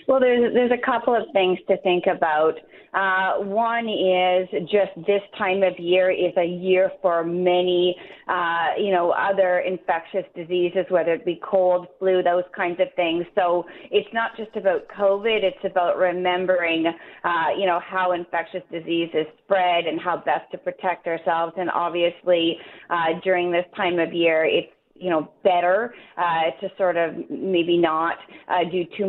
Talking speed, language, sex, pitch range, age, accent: 165 wpm, English, female, 170-190 Hz, 30-49, American